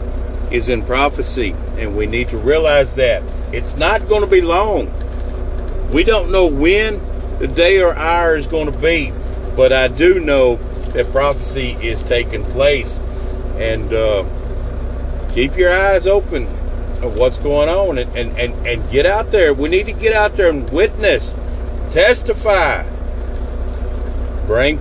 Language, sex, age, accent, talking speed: English, male, 50-69, American, 150 wpm